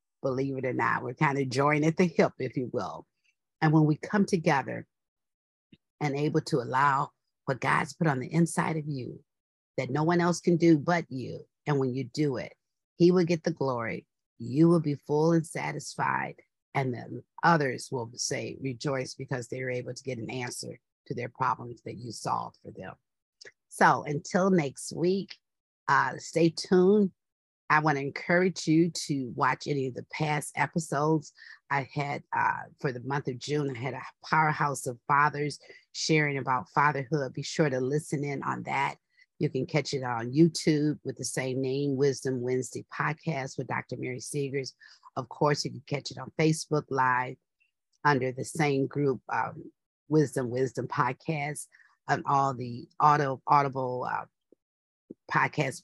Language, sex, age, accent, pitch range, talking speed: English, female, 50-69, American, 130-160 Hz, 170 wpm